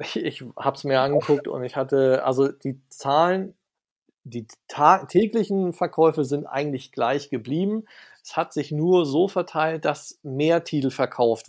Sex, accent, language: male, German, German